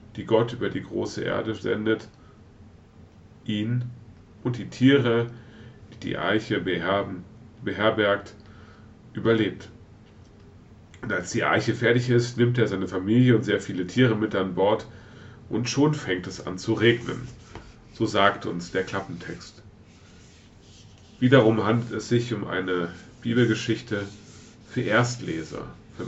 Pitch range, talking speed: 100-115 Hz, 125 wpm